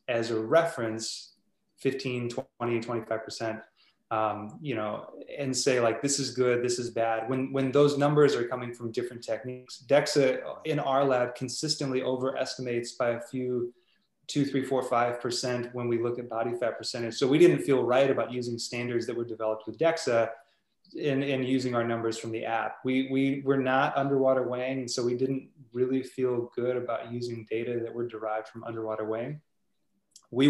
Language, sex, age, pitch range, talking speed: English, male, 20-39, 115-130 Hz, 175 wpm